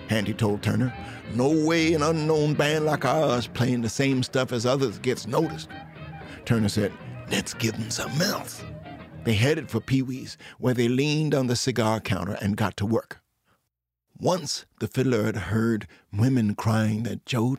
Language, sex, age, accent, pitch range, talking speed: English, male, 60-79, American, 105-130 Hz, 170 wpm